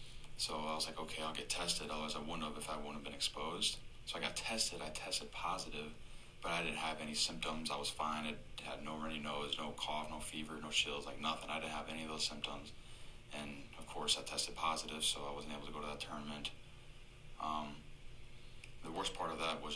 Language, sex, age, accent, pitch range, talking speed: English, male, 20-39, American, 75-80 Hz, 235 wpm